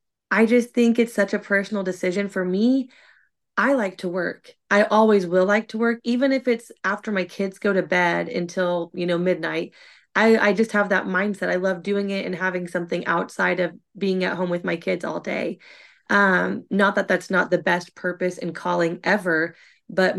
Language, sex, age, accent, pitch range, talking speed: English, female, 20-39, American, 175-210 Hz, 200 wpm